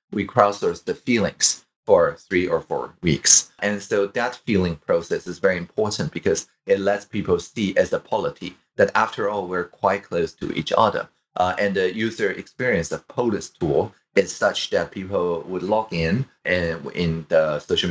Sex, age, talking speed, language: male, 30-49, 180 wpm, English